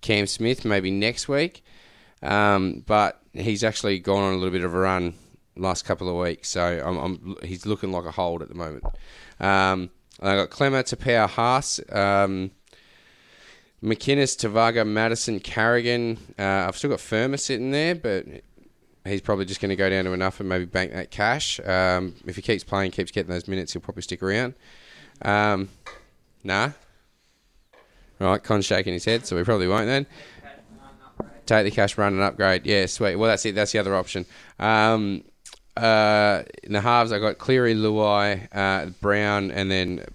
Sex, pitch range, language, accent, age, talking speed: male, 90-110 Hz, English, Australian, 20-39, 175 wpm